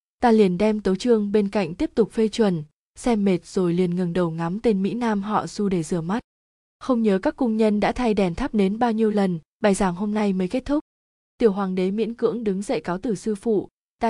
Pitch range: 185-225 Hz